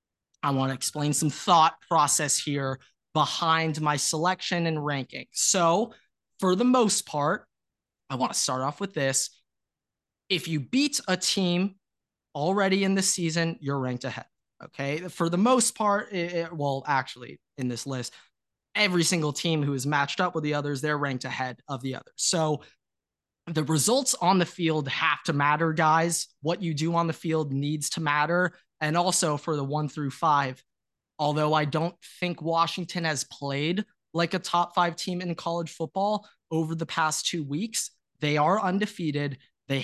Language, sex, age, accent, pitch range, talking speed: English, male, 20-39, American, 140-175 Hz, 175 wpm